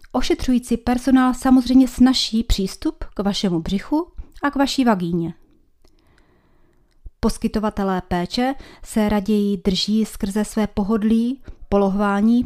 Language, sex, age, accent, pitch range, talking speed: Czech, female, 30-49, native, 200-255 Hz, 100 wpm